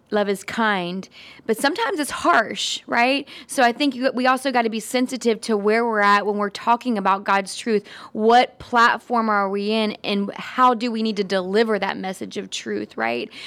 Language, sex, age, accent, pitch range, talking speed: English, female, 20-39, American, 200-235 Hz, 195 wpm